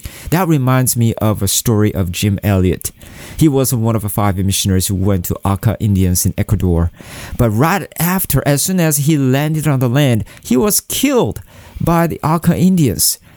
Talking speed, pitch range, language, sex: 185 wpm, 100-135 Hz, English, male